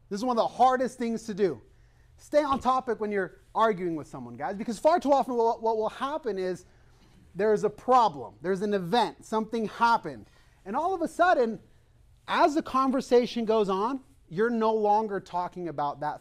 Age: 30-49